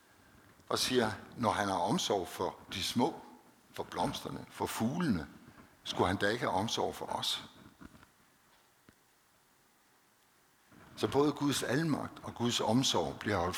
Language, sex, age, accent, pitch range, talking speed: Danish, male, 60-79, native, 105-125 Hz, 135 wpm